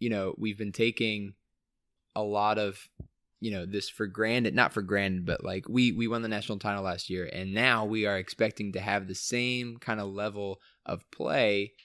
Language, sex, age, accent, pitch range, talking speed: English, male, 20-39, American, 100-120 Hz, 205 wpm